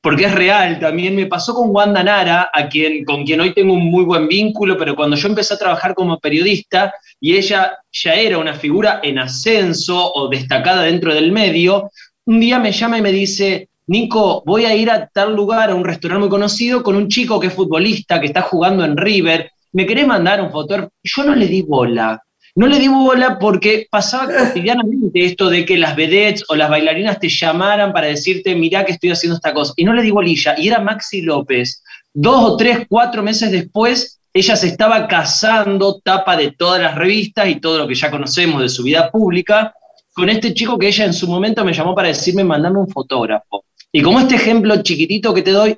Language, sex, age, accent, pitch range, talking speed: Spanish, male, 20-39, Argentinian, 165-215 Hz, 210 wpm